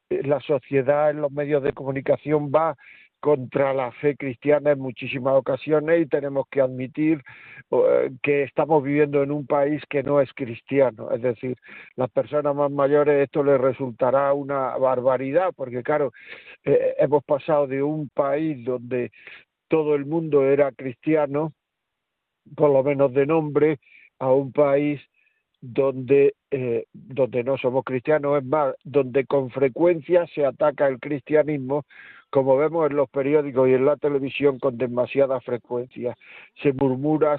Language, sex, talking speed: Spanish, male, 145 wpm